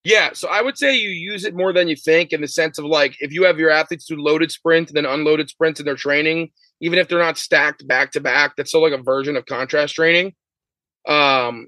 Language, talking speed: English, 240 wpm